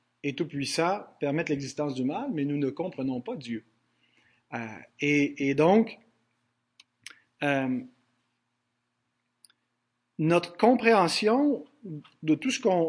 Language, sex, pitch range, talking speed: French, male, 135-185 Hz, 115 wpm